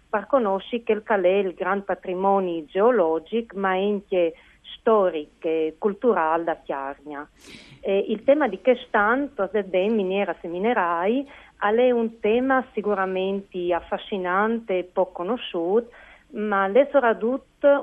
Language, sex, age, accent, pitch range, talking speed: Italian, female, 40-59, native, 170-220 Hz, 125 wpm